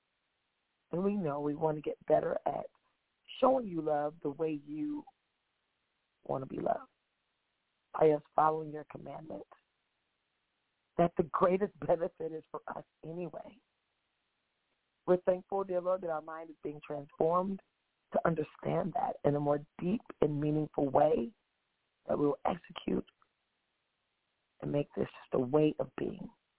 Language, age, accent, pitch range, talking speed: English, 40-59, American, 150-195 Hz, 145 wpm